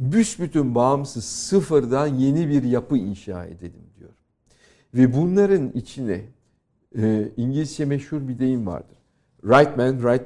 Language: Turkish